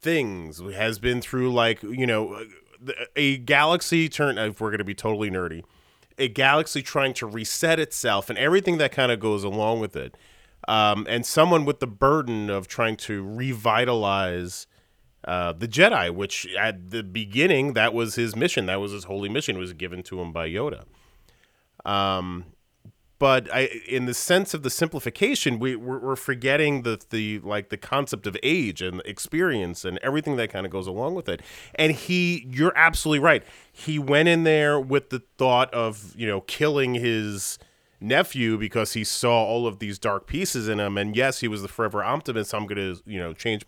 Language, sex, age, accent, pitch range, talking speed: English, male, 30-49, American, 105-135 Hz, 190 wpm